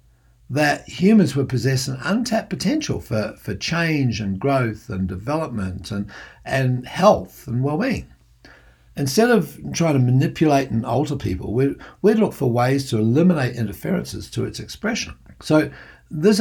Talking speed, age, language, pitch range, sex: 150 wpm, 60-79, English, 105-145 Hz, male